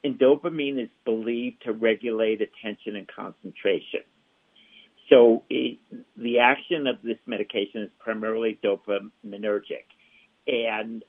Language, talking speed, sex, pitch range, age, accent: English, 105 wpm, male, 110-130 Hz, 60-79, American